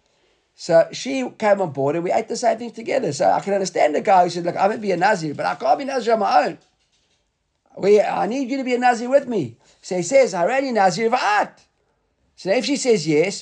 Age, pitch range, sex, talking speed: 50-69, 195-250 Hz, male, 265 wpm